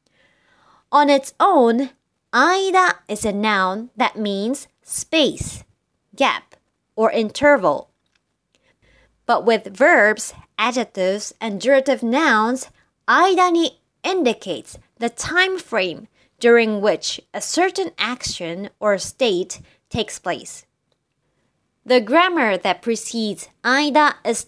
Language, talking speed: English, 100 wpm